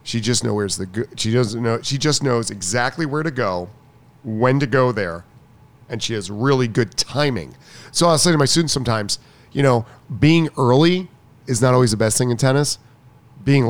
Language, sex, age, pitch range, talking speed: English, male, 40-59, 115-145 Hz, 195 wpm